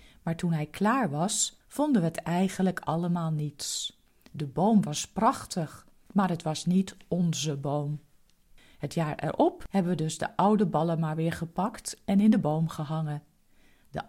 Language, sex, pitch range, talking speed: Dutch, female, 155-220 Hz, 165 wpm